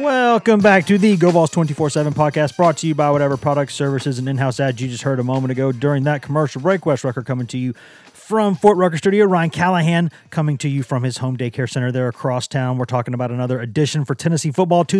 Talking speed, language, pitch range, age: 235 wpm, English, 130-160 Hz, 30-49